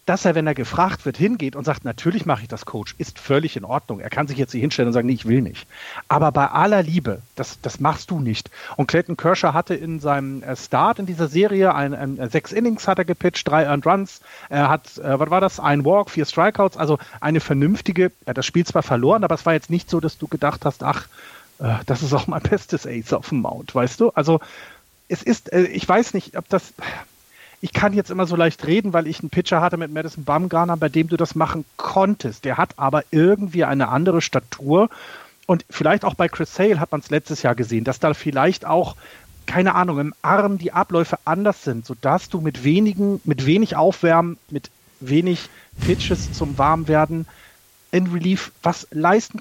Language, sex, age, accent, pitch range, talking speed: German, male, 40-59, German, 140-180 Hz, 210 wpm